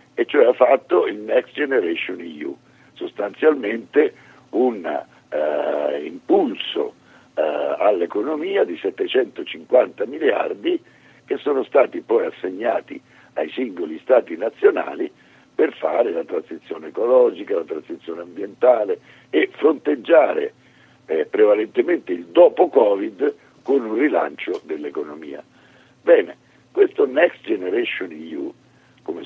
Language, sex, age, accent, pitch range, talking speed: Italian, male, 60-79, native, 355-445 Hz, 105 wpm